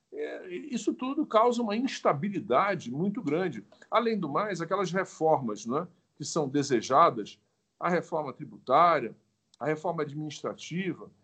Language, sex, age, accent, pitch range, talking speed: Portuguese, male, 50-69, Brazilian, 165-215 Hz, 125 wpm